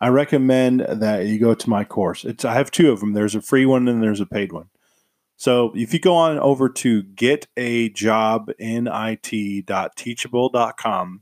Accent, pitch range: American, 100-125 Hz